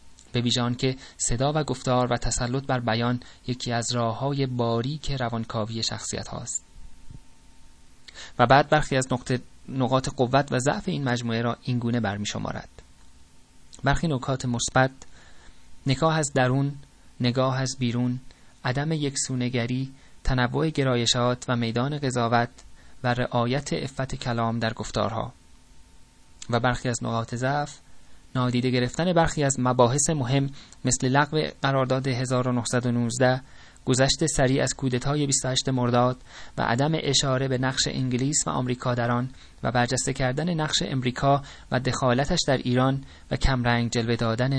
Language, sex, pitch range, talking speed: Persian, male, 120-135 Hz, 135 wpm